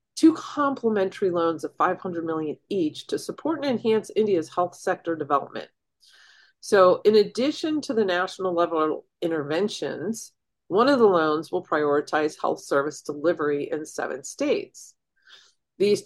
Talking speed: 135 wpm